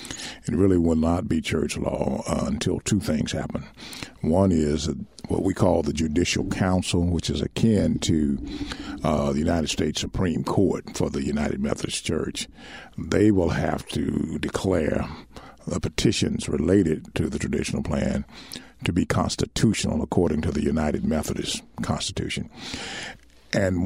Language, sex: English, male